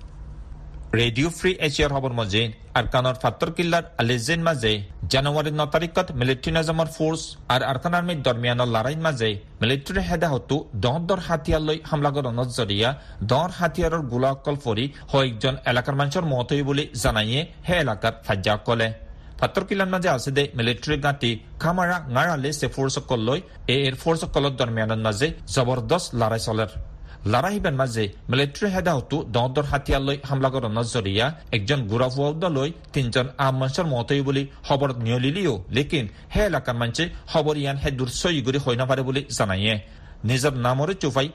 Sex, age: male, 40-59